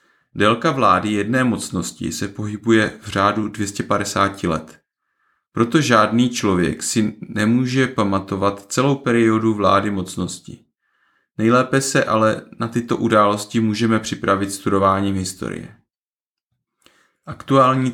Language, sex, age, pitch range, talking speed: Czech, male, 30-49, 100-125 Hz, 105 wpm